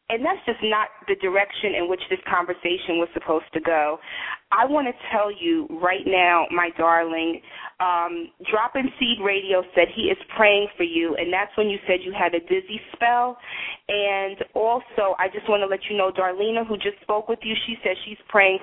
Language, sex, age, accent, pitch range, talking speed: English, female, 30-49, American, 195-245 Hz, 200 wpm